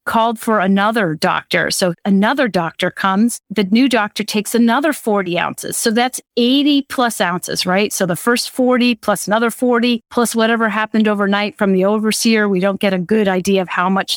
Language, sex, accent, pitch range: English, female, American, 195-240 Hz